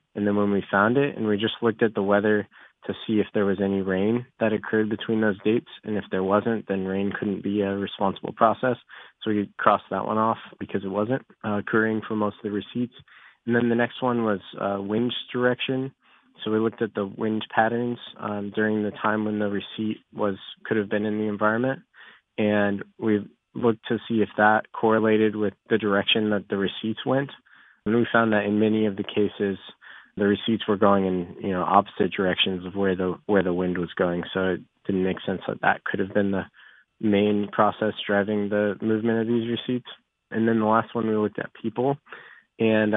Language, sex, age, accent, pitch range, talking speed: English, male, 20-39, American, 100-110 Hz, 210 wpm